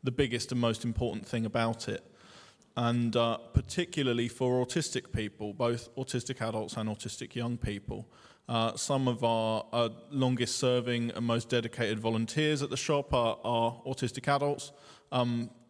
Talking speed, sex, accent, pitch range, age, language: 155 wpm, male, British, 115-125 Hz, 20-39, English